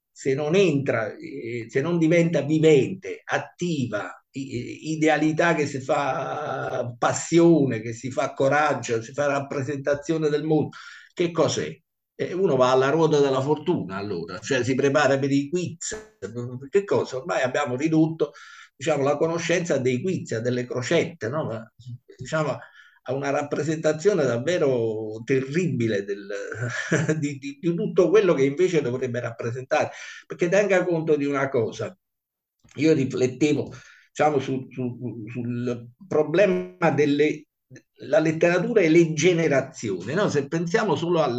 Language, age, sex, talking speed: Italian, 50-69, male, 125 wpm